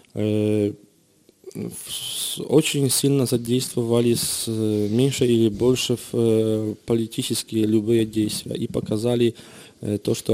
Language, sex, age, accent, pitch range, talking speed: Russian, male, 20-39, Polish, 110-120 Hz, 80 wpm